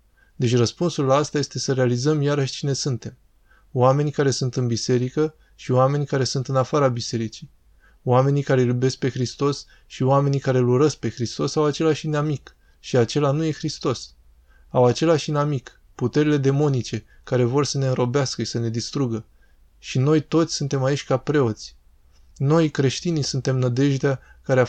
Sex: male